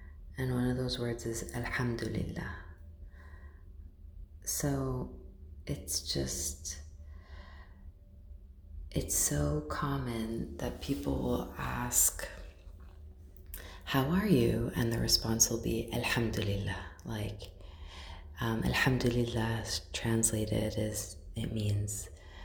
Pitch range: 75-115 Hz